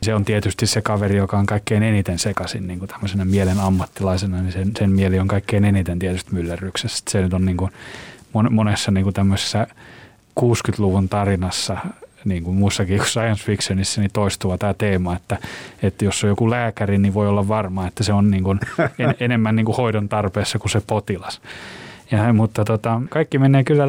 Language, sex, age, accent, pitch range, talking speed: Finnish, male, 30-49, native, 100-115 Hz, 180 wpm